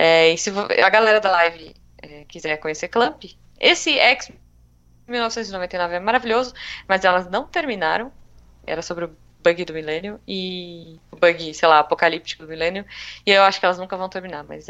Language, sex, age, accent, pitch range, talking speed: Portuguese, female, 20-39, Brazilian, 160-225 Hz, 180 wpm